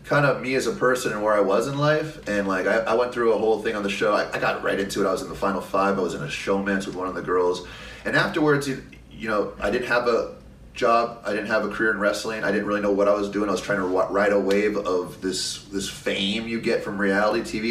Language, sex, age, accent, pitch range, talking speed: English, male, 30-49, American, 100-115 Hz, 290 wpm